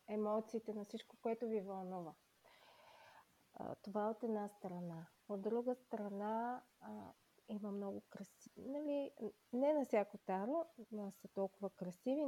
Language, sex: Bulgarian, female